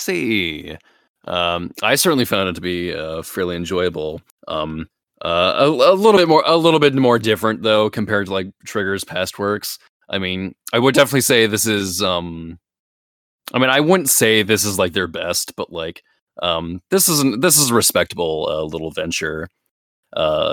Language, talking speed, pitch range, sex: English, 180 wpm, 85-115 Hz, male